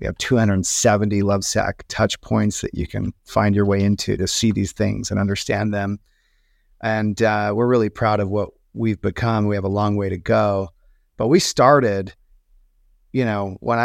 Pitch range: 100-125 Hz